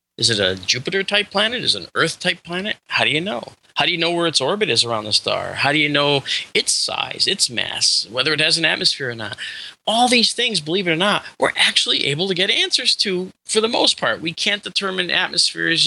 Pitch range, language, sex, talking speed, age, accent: 120-180 Hz, English, male, 240 wpm, 30-49, American